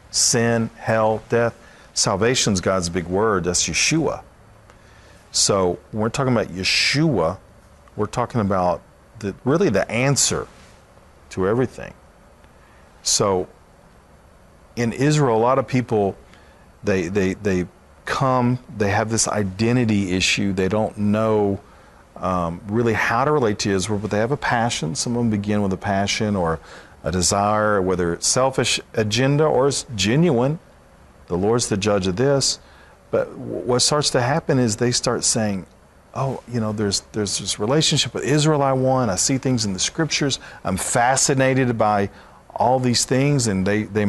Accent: American